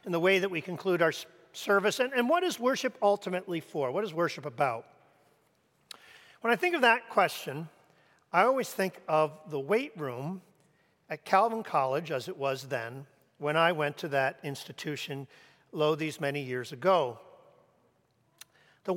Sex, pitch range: male, 150-195 Hz